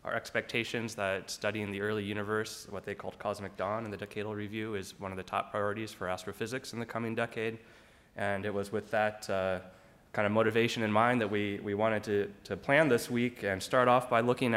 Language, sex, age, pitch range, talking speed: English, male, 20-39, 95-115 Hz, 220 wpm